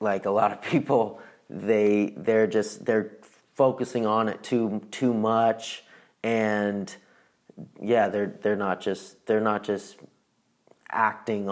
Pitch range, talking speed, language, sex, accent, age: 100-110 Hz, 130 wpm, English, male, American, 30-49